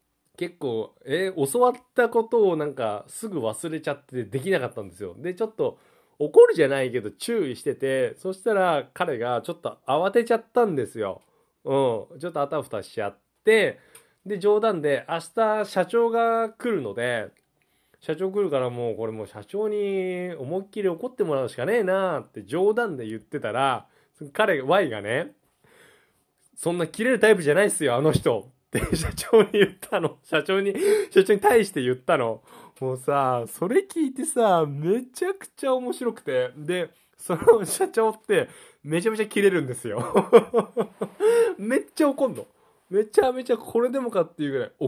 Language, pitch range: Japanese, 155-245 Hz